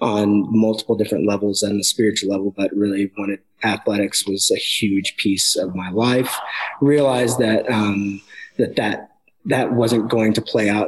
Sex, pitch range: male, 100-115 Hz